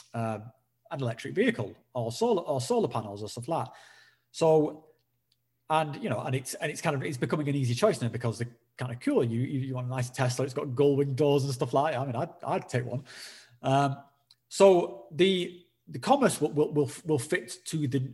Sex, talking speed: male, 220 wpm